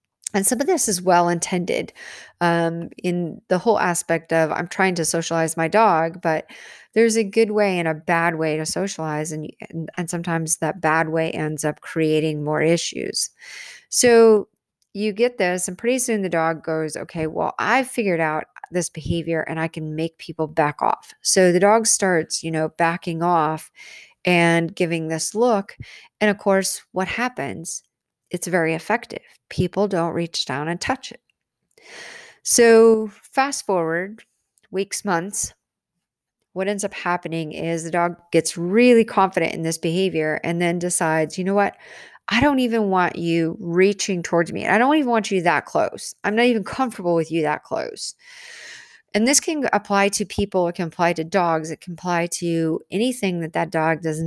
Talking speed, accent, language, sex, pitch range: 175 wpm, American, English, female, 165-210 Hz